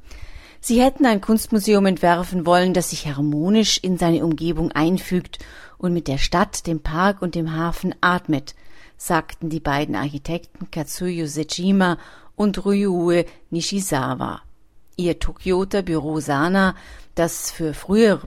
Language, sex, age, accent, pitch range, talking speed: German, female, 40-59, German, 155-190 Hz, 125 wpm